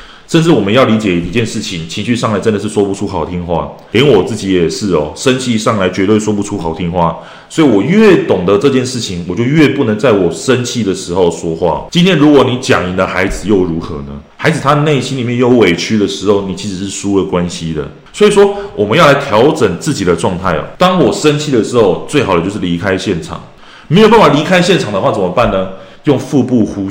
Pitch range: 95-135 Hz